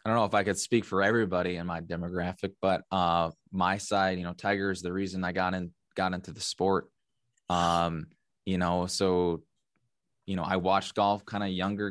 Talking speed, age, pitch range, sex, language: 205 wpm, 20-39, 85-100 Hz, male, English